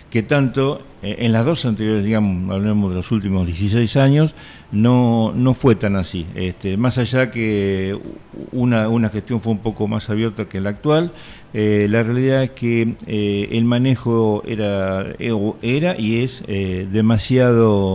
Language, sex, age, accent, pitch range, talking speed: Spanish, male, 50-69, Argentinian, 100-125 Hz, 155 wpm